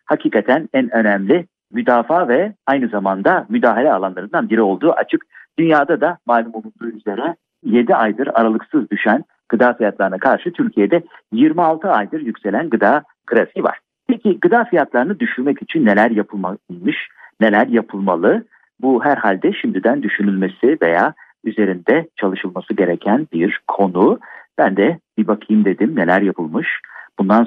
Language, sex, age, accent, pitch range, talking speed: Turkish, male, 50-69, native, 105-135 Hz, 125 wpm